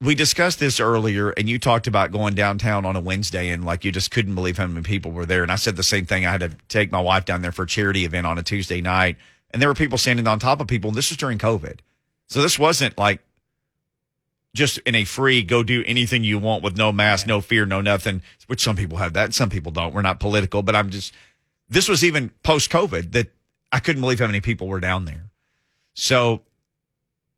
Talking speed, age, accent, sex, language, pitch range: 245 wpm, 40-59, American, male, English, 95-125 Hz